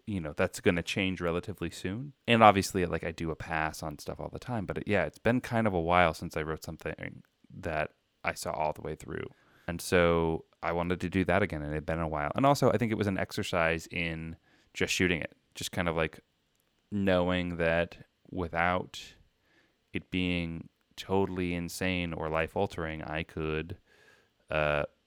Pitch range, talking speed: 80-100 Hz, 195 wpm